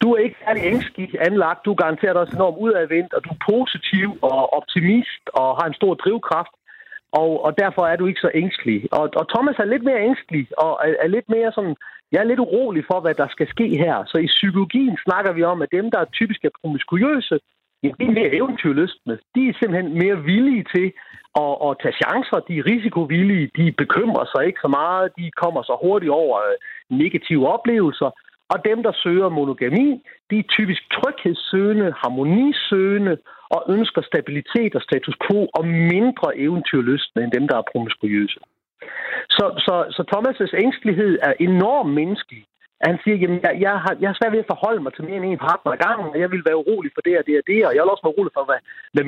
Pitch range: 160-230 Hz